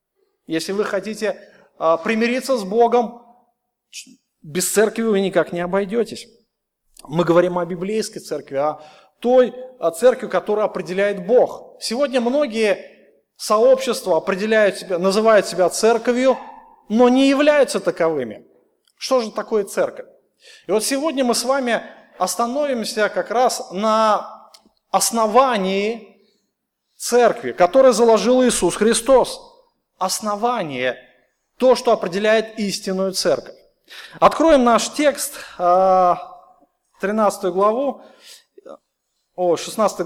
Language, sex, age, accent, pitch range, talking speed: Russian, male, 30-49, native, 190-250 Hz, 105 wpm